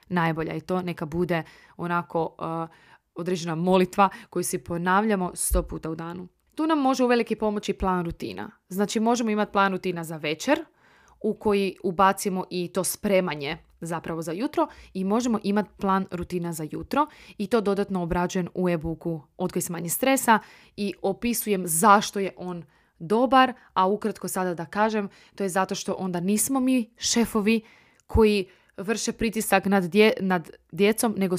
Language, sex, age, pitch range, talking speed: Croatian, female, 20-39, 175-210 Hz, 160 wpm